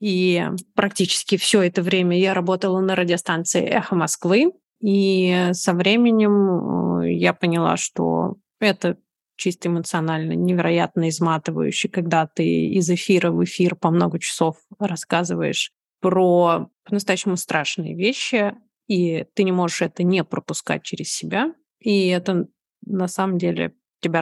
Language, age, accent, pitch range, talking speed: Russian, 20-39, native, 175-205 Hz, 125 wpm